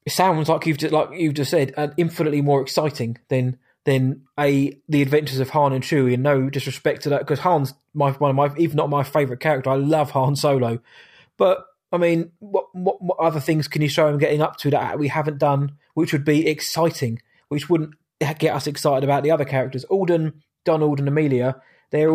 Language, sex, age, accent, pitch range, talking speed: English, male, 20-39, British, 140-165 Hz, 210 wpm